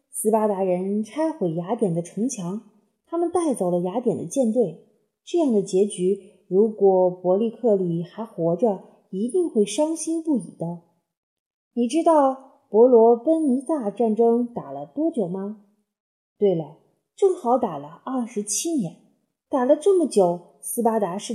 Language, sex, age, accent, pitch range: Chinese, female, 30-49, native, 190-270 Hz